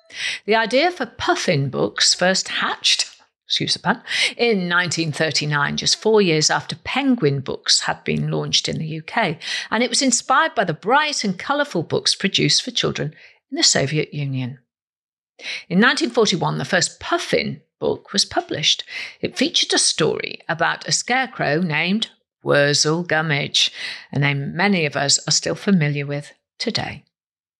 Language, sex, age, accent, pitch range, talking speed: English, female, 50-69, British, 150-240 Hz, 145 wpm